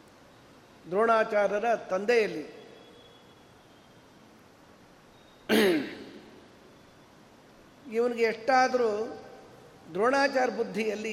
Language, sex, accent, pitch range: Kannada, male, native, 190-245 Hz